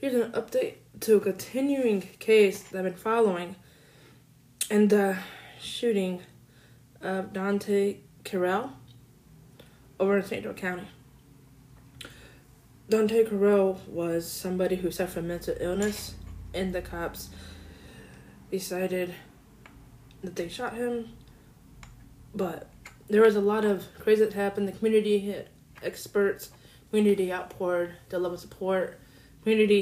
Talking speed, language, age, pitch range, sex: 115 wpm, English, 20-39, 165-225 Hz, female